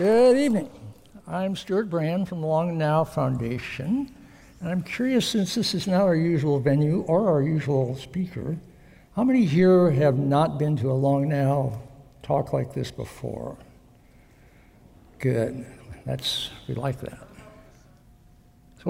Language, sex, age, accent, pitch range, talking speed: English, male, 60-79, American, 130-160 Hz, 140 wpm